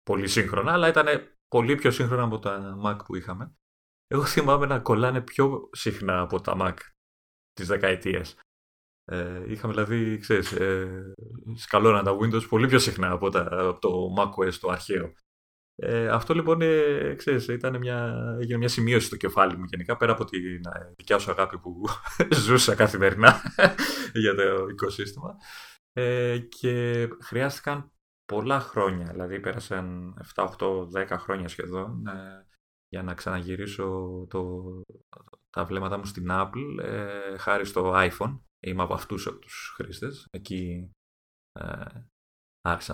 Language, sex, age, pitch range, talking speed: Greek, male, 30-49, 90-120 Hz, 140 wpm